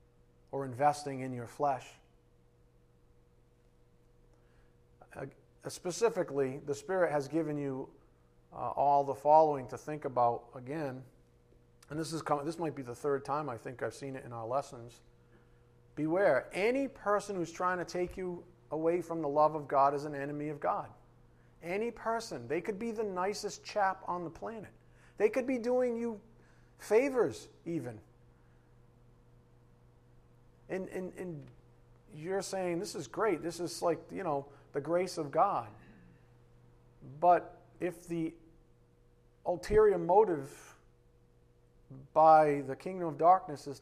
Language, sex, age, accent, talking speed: English, male, 40-59, American, 140 wpm